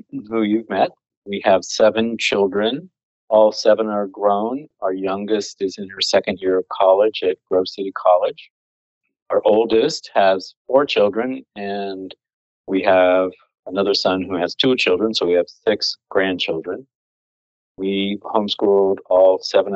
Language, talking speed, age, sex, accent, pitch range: English, 145 wpm, 40-59, male, American, 95-110 Hz